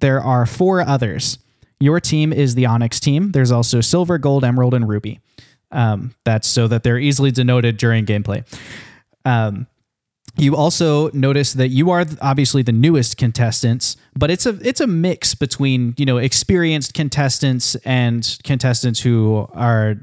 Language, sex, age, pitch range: English, male, 20-39, 115-135 Hz